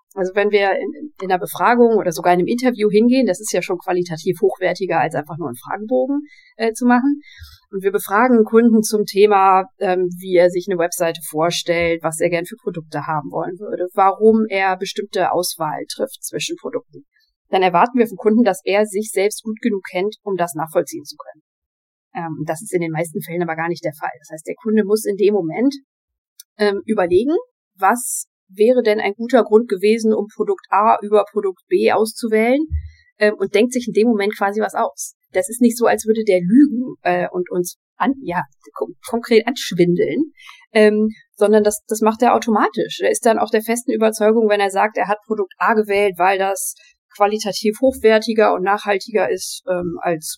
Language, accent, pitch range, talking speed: German, German, 180-230 Hz, 195 wpm